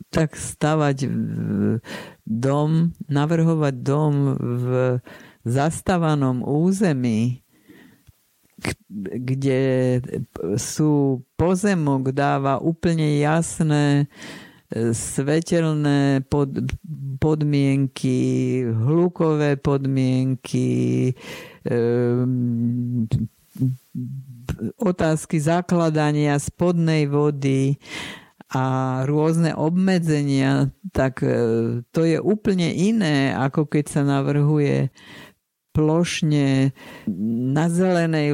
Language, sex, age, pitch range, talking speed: Slovak, female, 50-69, 130-160 Hz, 60 wpm